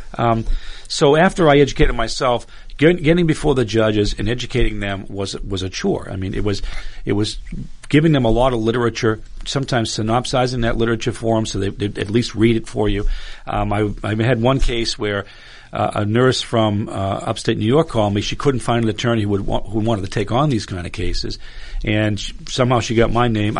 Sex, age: male, 40-59